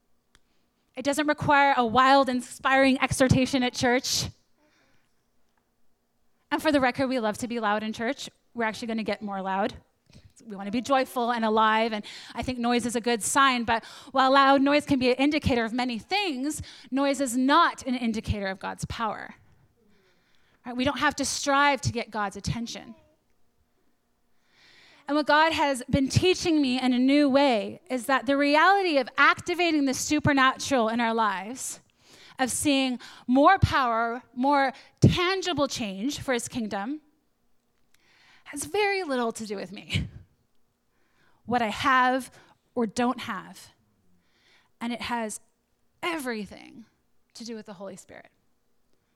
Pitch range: 230-280 Hz